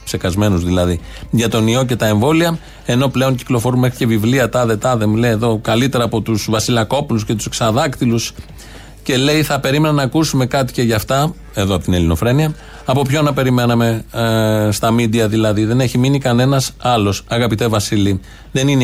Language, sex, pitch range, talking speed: Greek, male, 110-145 Hz, 180 wpm